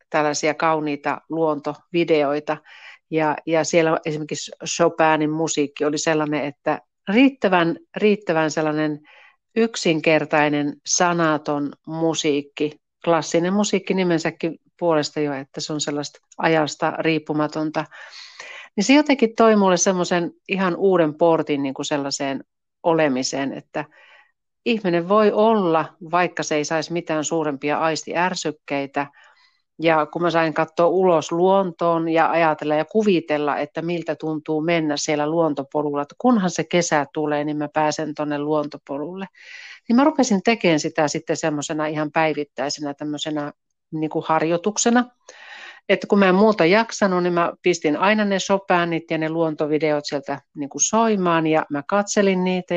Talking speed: 125 wpm